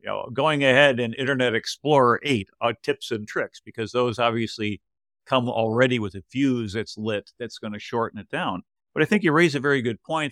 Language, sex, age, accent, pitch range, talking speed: English, male, 50-69, American, 110-140 Hz, 215 wpm